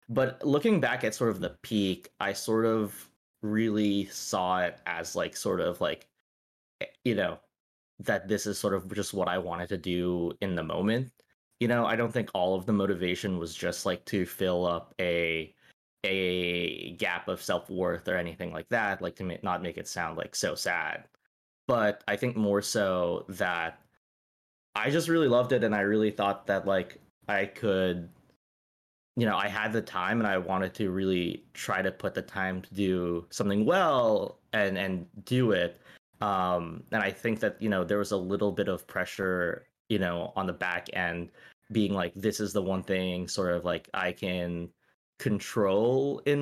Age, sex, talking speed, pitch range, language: 20-39, male, 185 wpm, 90-105 Hz, English